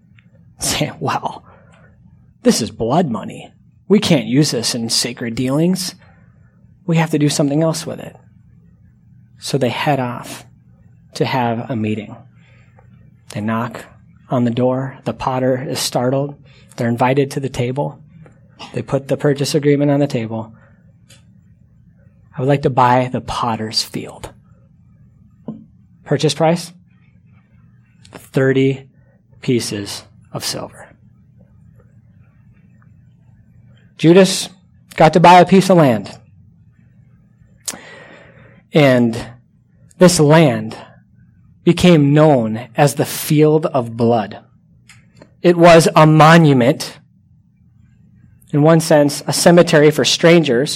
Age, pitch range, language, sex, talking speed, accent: 30-49, 120-155 Hz, English, male, 110 wpm, American